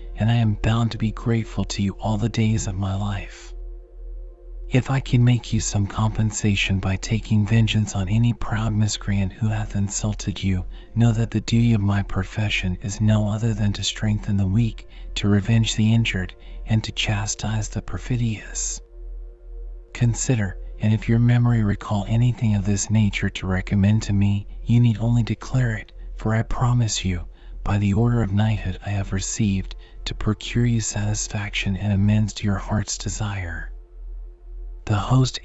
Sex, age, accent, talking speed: male, 40-59, American, 170 wpm